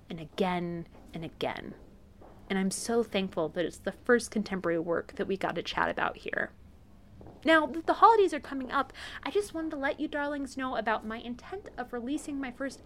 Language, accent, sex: English, American, female